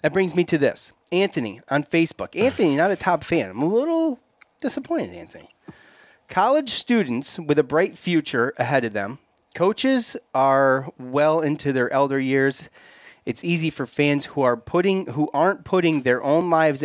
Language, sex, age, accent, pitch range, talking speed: English, male, 30-49, American, 125-165 Hz, 160 wpm